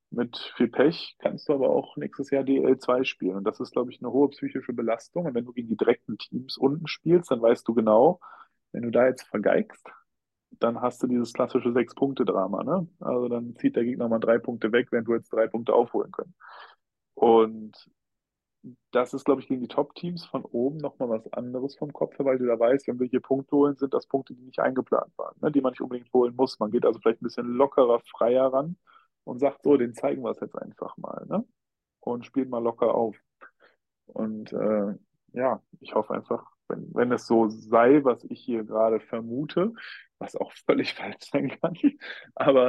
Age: 30-49